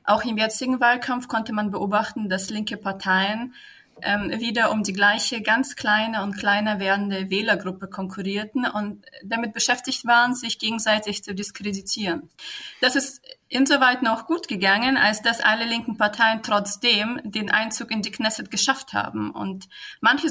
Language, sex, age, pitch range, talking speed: German, female, 20-39, 195-240 Hz, 150 wpm